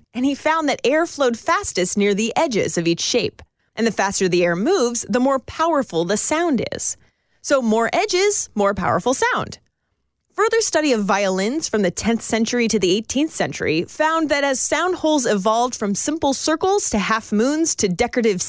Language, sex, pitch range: English, female, 205-310 Hz